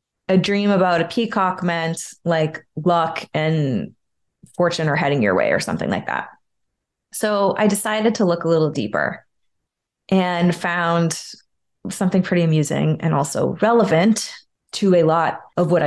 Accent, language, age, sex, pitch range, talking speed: American, English, 20-39, female, 165-210 Hz, 150 wpm